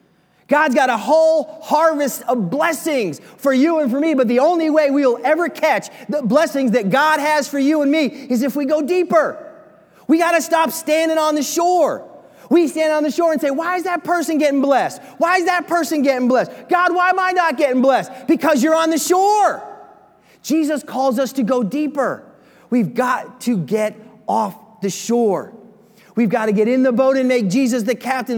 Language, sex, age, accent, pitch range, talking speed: English, male, 30-49, American, 185-290 Hz, 205 wpm